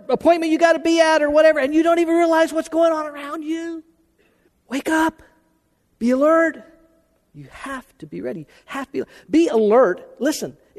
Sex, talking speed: male, 180 wpm